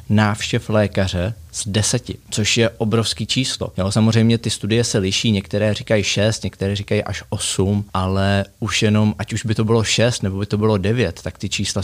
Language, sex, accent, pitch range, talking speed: Czech, male, native, 90-105 Hz, 195 wpm